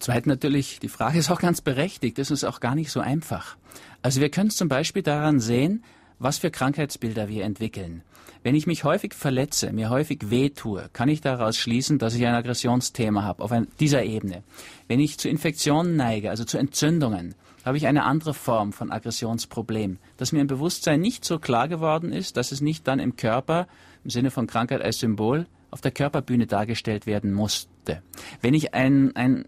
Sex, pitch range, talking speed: male, 110-145 Hz, 195 wpm